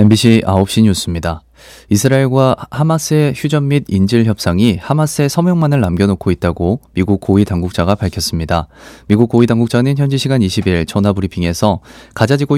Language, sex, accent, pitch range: Korean, male, native, 95-125 Hz